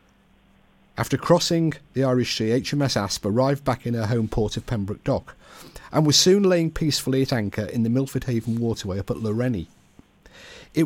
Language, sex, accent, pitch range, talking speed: English, male, British, 110-155 Hz, 175 wpm